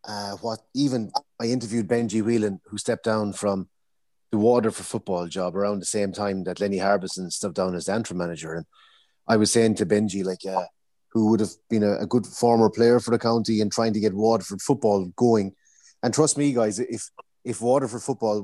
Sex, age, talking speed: male, 30-49, 200 wpm